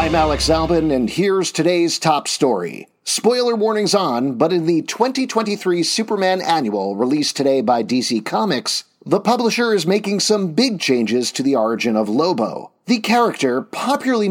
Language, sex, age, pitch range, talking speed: English, male, 40-59, 140-215 Hz, 155 wpm